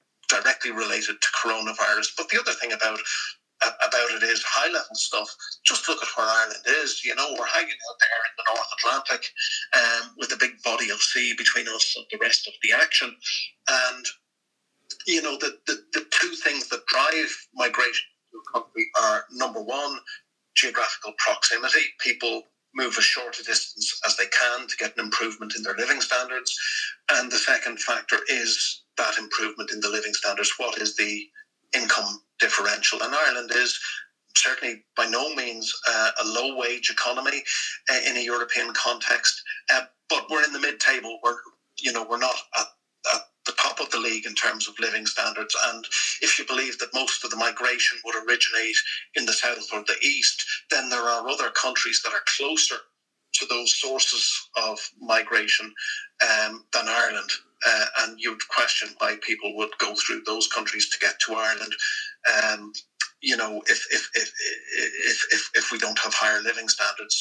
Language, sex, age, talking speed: English, male, 50-69, 175 wpm